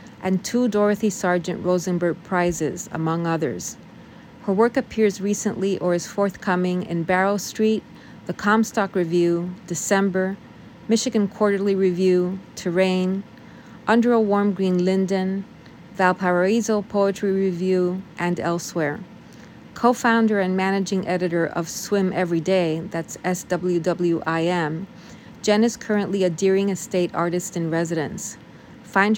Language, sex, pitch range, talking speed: English, female, 175-200 Hz, 110 wpm